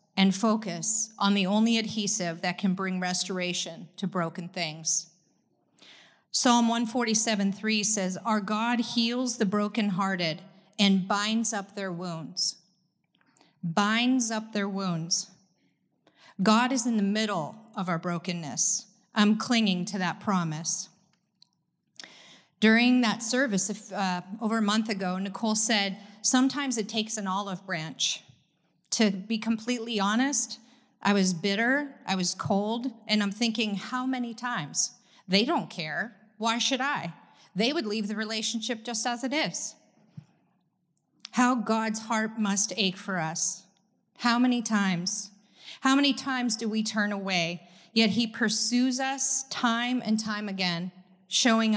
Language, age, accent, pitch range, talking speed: English, 40-59, American, 185-230 Hz, 135 wpm